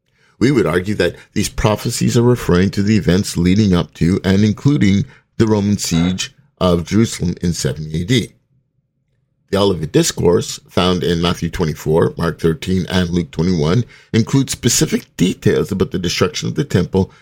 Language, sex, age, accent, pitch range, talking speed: English, male, 50-69, American, 90-130 Hz, 155 wpm